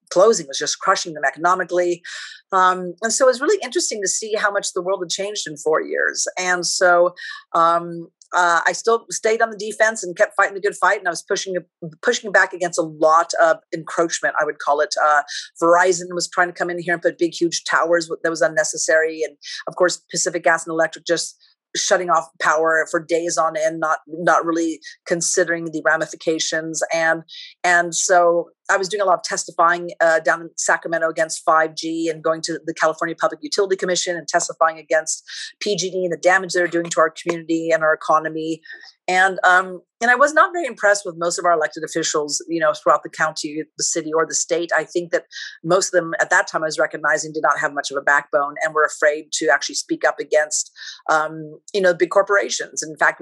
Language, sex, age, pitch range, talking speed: English, female, 40-59, 160-185 Hz, 215 wpm